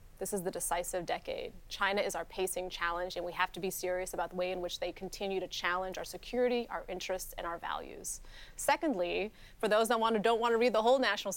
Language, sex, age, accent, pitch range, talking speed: English, female, 30-49, American, 185-210 Hz, 225 wpm